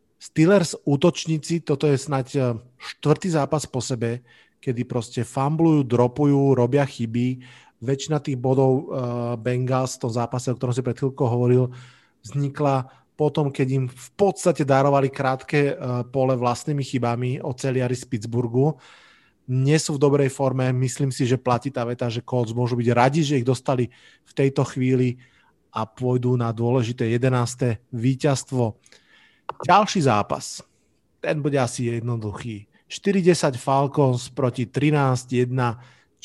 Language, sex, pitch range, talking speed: Slovak, male, 125-150 Hz, 130 wpm